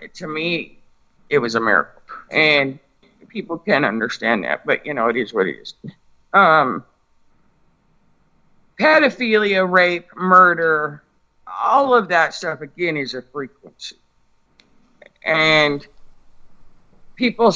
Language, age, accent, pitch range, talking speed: English, 50-69, American, 145-190 Hz, 115 wpm